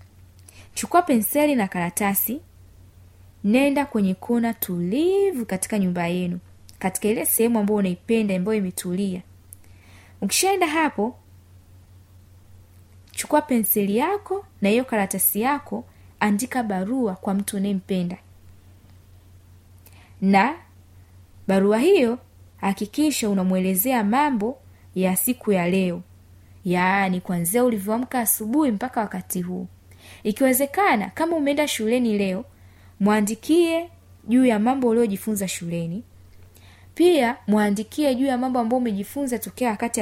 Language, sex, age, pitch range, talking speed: Swahili, female, 20-39, 165-240 Hz, 105 wpm